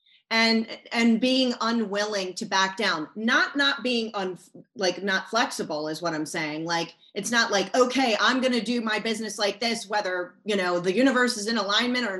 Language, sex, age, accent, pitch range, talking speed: English, female, 30-49, American, 190-250 Hz, 190 wpm